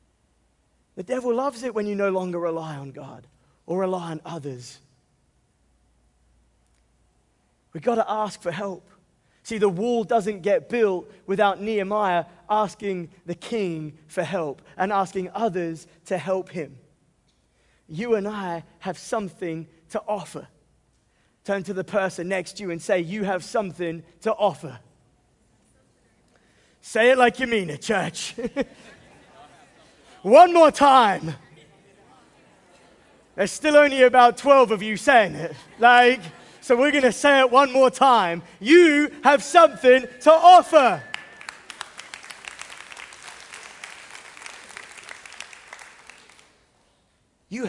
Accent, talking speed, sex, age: British, 120 wpm, male, 20-39